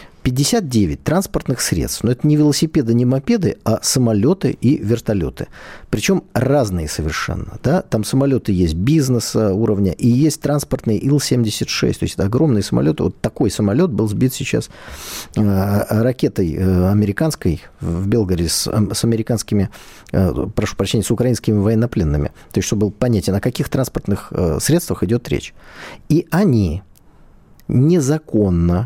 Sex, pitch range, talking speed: male, 100-135 Hz, 135 wpm